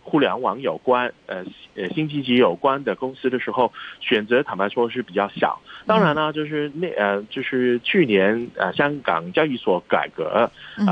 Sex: male